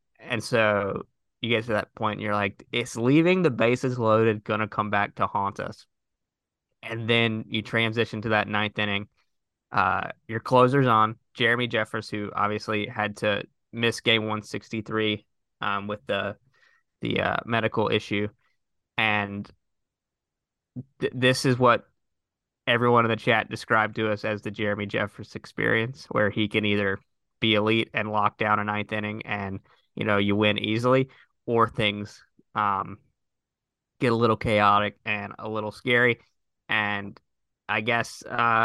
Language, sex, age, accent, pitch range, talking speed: English, male, 20-39, American, 105-120 Hz, 155 wpm